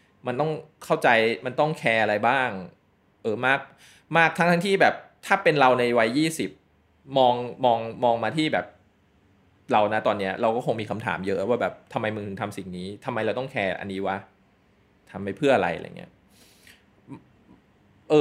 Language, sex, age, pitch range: Thai, male, 20-39, 105-155 Hz